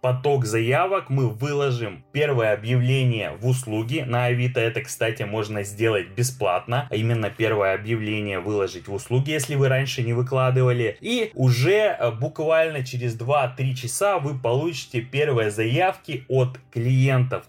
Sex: male